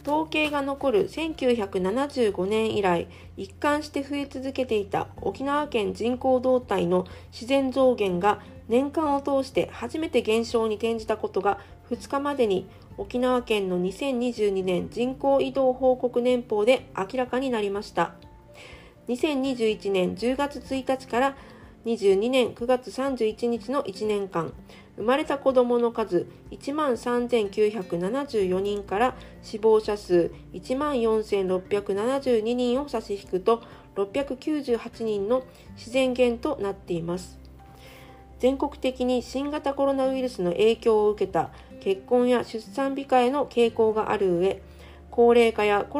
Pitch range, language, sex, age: 200-265 Hz, Japanese, female, 40-59